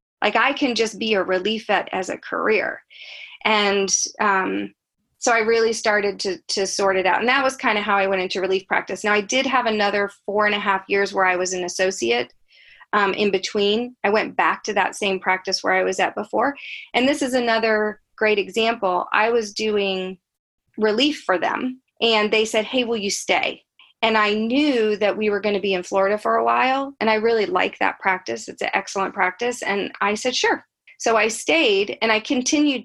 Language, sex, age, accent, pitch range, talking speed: English, female, 30-49, American, 195-230 Hz, 210 wpm